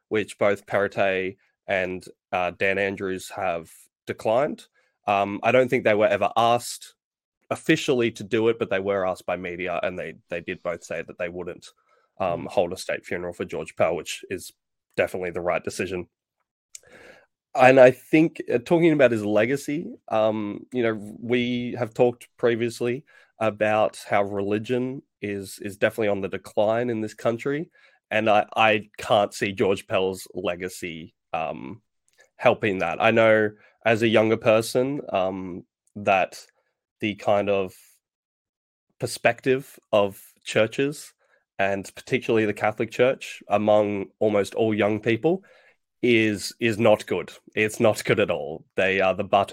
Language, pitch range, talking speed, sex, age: English, 100-120 Hz, 150 wpm, male, 20-39